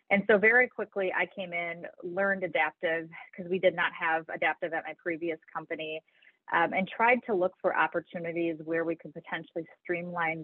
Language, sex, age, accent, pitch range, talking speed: English, female, 30-49, American, 160-180 Hz, 180 wpm